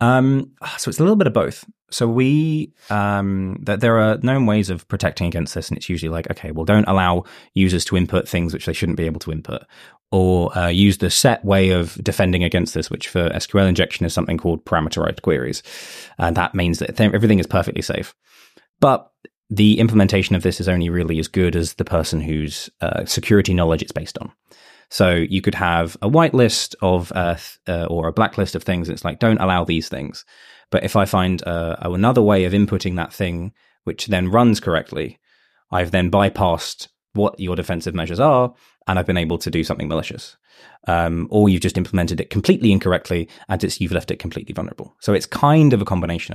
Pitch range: 85-105 Hz